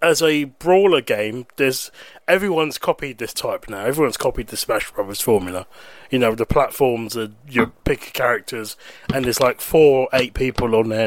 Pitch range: 125-175 Hz